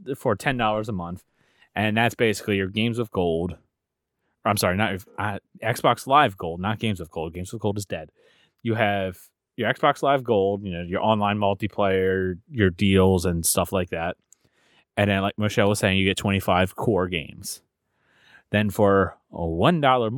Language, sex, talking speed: English, male, 170 wpm